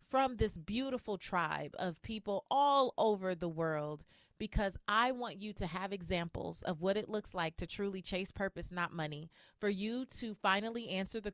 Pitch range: 180-225 Hz